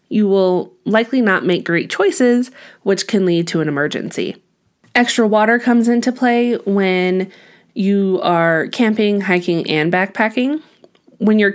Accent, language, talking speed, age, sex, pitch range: American, English, 140 wpm, 20-39, female, 170-220 Hz